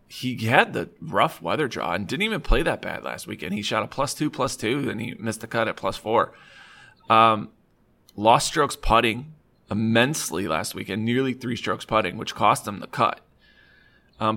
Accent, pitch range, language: American, 105-130 Hz, English